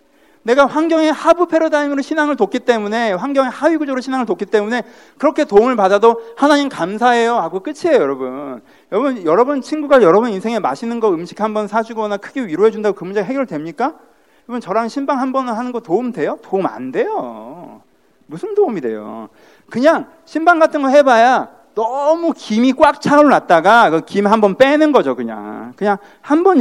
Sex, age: male, 40-59